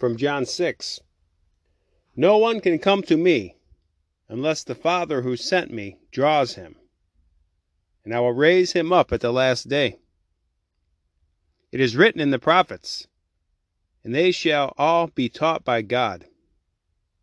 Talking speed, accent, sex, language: 145 wpm, American, male, English